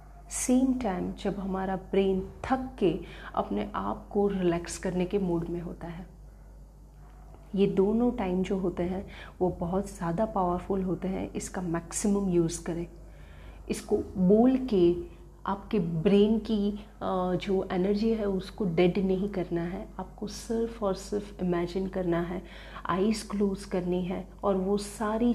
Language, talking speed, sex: Hindi, 145 wpm, female